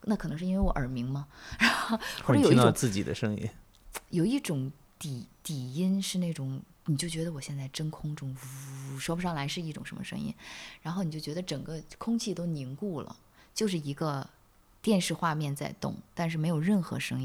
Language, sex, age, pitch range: Chinese, female, 20-39, 140-190 Hz